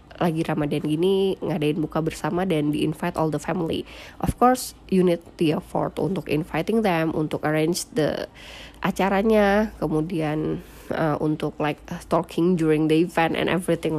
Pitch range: 155-190 Hz